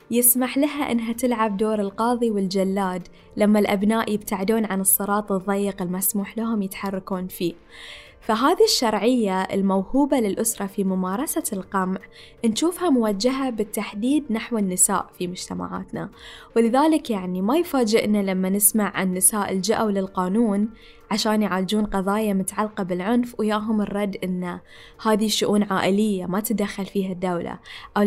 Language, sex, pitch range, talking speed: Arabic, female, 195-240 Hz, 120 wpm